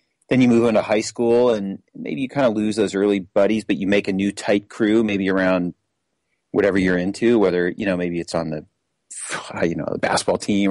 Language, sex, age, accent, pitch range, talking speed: English, male, 30-49, American, 100-130 Hz, 225 wpm